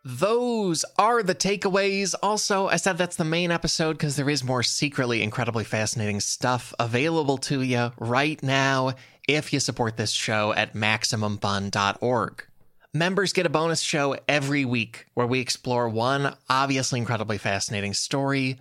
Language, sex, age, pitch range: English, male, 20-39, 115-160 Hz